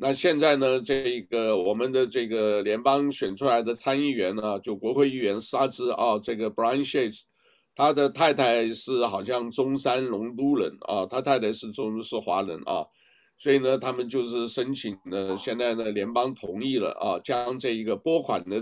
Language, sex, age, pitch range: Chinese, male, 60-79, 110-135 Hz